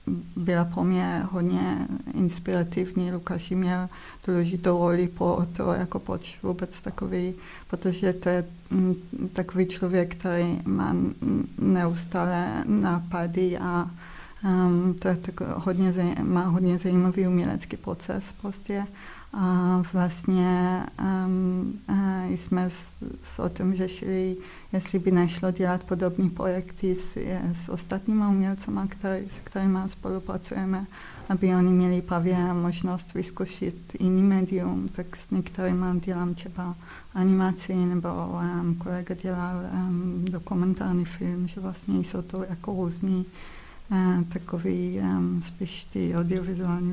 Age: 20-39